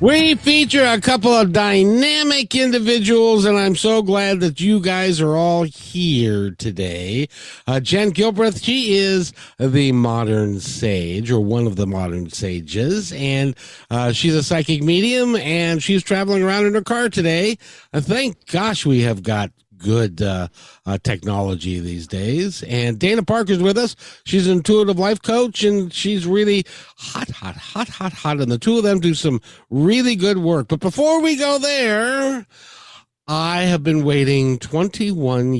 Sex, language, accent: male, English, American